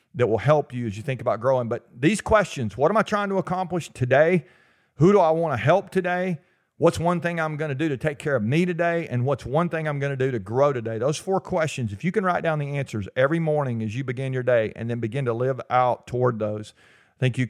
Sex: male